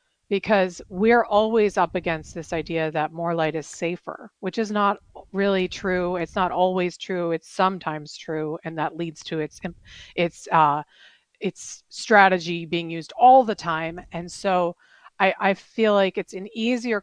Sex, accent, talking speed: female, American, 165 wpm